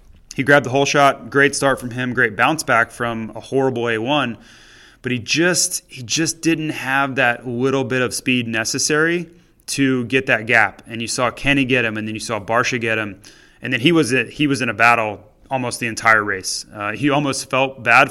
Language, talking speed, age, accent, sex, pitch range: English, 215 wpm, 20-39, American, male, 115-140 Hz